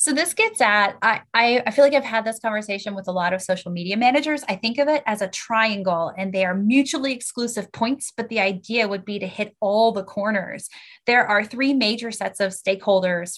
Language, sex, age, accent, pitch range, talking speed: English, female, 20-39, American, 200-255 Hz, 220 wpm